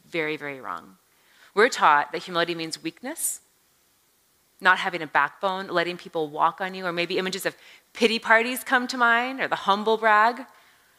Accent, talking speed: American, 170 wpm